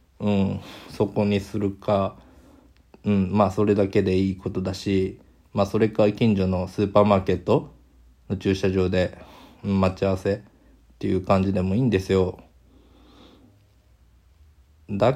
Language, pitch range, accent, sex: Japanese, 95-105 Hz, native, male